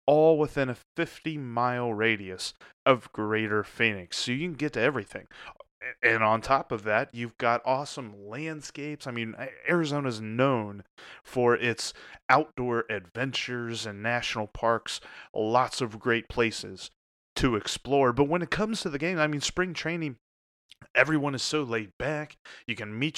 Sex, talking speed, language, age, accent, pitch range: male, 155 wpm, English, 30-49, American, 110-135 Hz